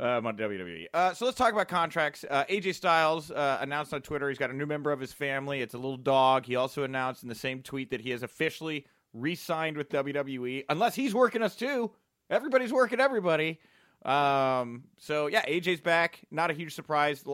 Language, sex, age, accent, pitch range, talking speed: English, male, 30-49, American, 120-160 Hz, 210 wpm